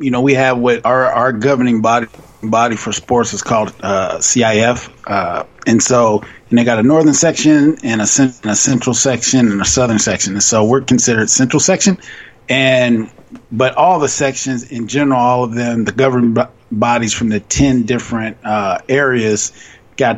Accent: American